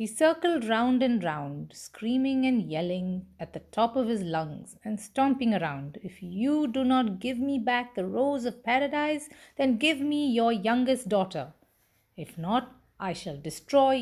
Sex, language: female, English